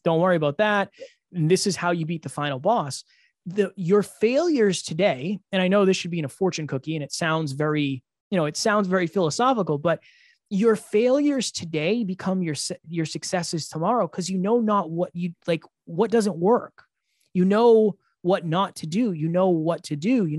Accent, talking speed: American, 200 wpm